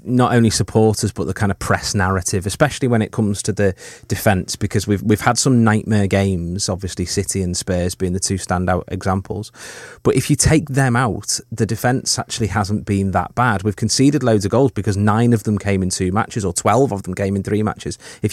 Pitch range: 100-120 Hz